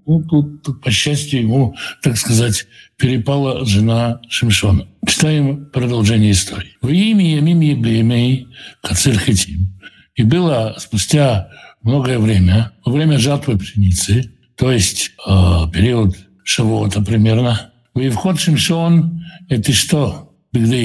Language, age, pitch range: Russian, 60-79, 105-145 Hz